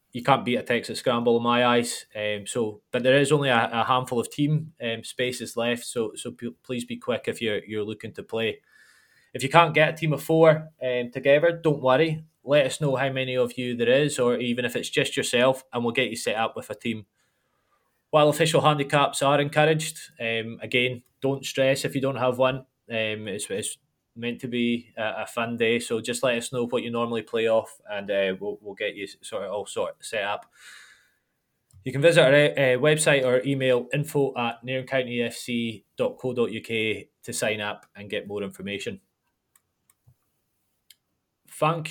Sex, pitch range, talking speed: male, 120-150 Hz, 195 wpm